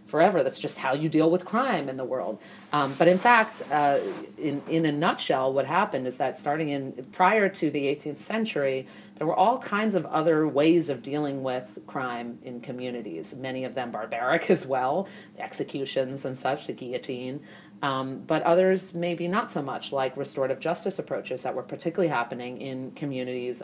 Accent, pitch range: American, 130-155 Hz